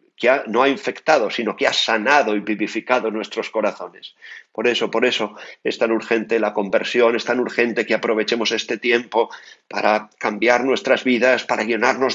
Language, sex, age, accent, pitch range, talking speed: Spanish, male, 40-59, Spanish, 115-140 Hz, 175 wpm